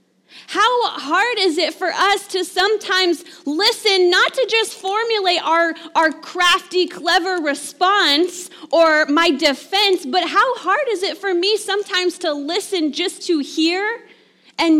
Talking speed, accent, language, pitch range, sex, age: 140 wpm, American, English, 295-385 Hz, female, 20-39